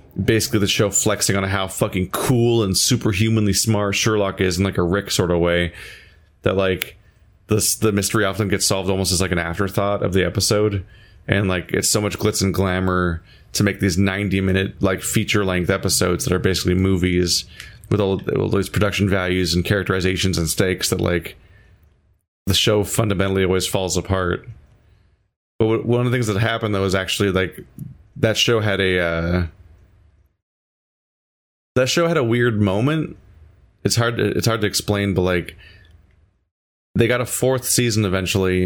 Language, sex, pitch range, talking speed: English, male, 90-110 Hz, 170 wpm